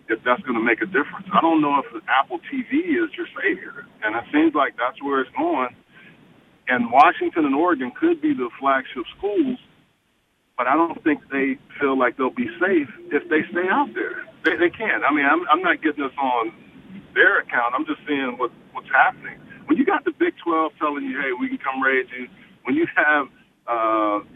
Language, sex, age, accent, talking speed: English, male, 50-69, American, 205 wpm